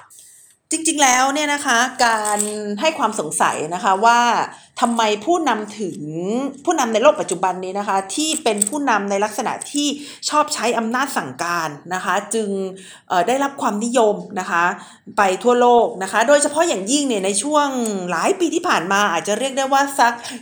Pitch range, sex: 200-275 Hz, female